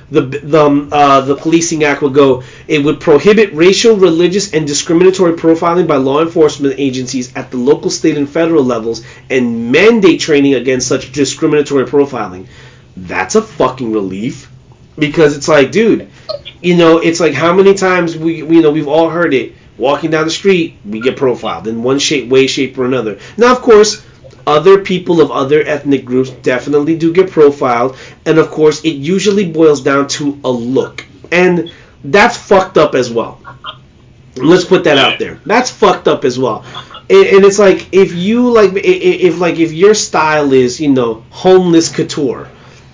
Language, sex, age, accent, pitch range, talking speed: English, male, 30-49, American, 140-190 Hz, 175 wpm